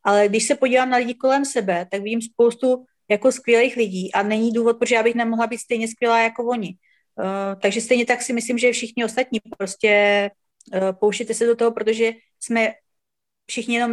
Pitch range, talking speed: 205-245 Hz, 195 wpm